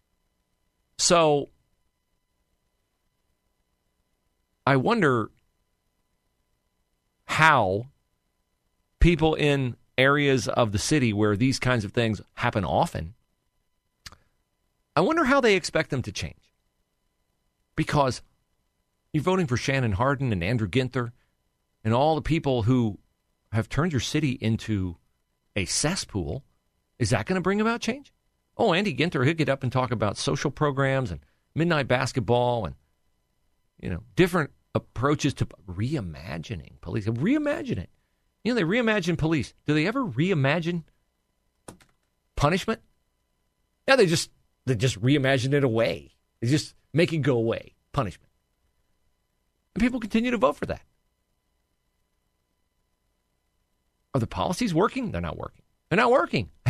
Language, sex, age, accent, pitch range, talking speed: English, male, 40-59, American, 105-160 Hz, 125 wpm